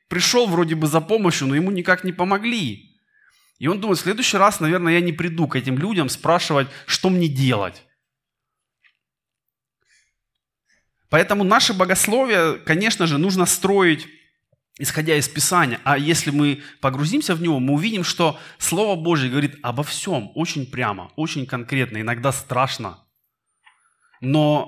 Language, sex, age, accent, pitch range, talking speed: Russian, male, 20-39, native, 130-175 Hz, 140 wpm